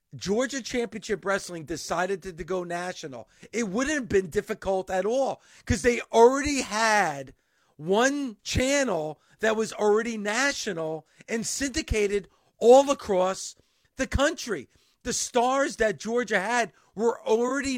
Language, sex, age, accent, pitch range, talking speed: English, male, 50-69, American, 190-245 Hz, 130 wpm